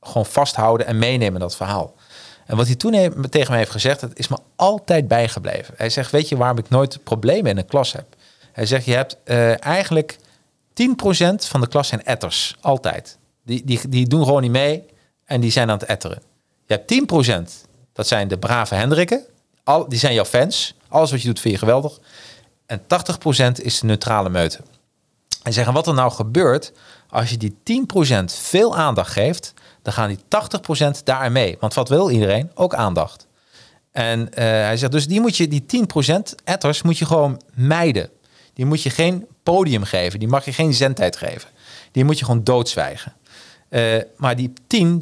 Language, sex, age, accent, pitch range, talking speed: Dutch, male, 40-59, Dutch, 115-155 Hz, 190 wpm